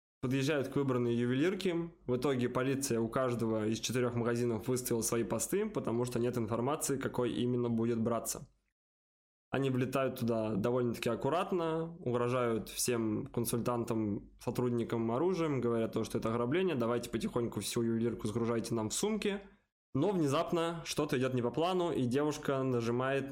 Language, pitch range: Russian, 120-140 Hz